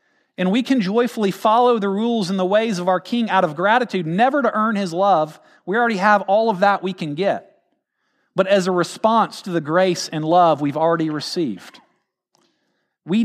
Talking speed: 195 wpm